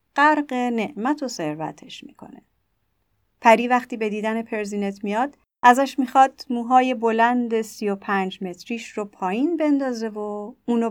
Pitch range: 200-275 Hz